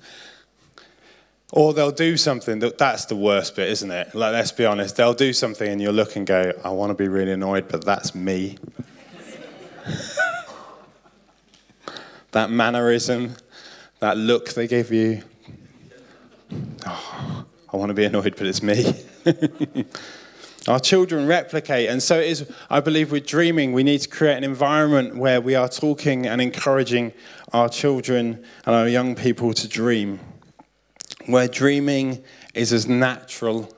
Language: English